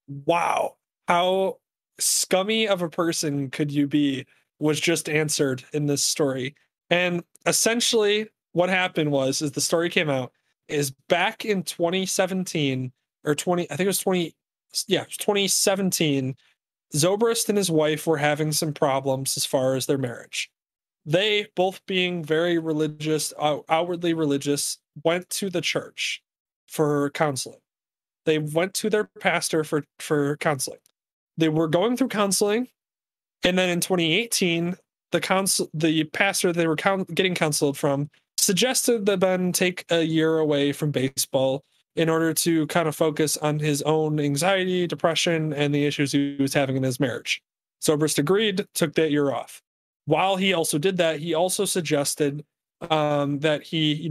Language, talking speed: English, 155 wpm